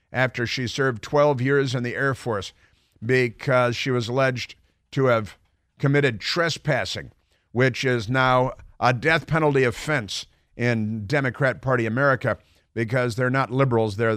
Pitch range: 115-150 Hz